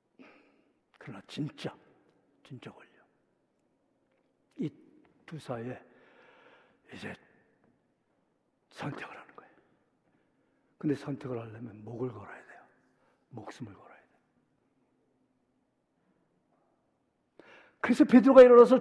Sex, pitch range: male, 185-275 Hz